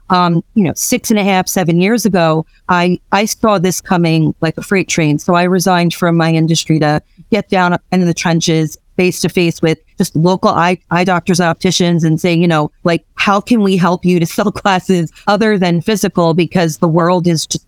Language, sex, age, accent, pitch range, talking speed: English, female, 40-59, American, 165-205 Hz, 210 wpm